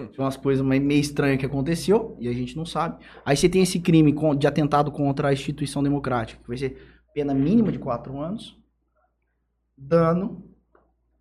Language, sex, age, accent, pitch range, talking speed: Portuguese, male, 20-39, Brazilian, 135-170 Hz, 170 wpm